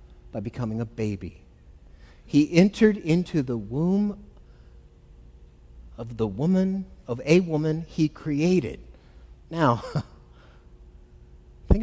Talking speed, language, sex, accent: 95 wpm, English, male, American